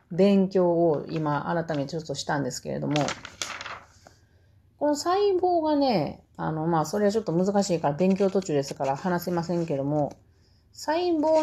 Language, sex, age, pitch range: Japanese, female, 30-49, 135-215 Hz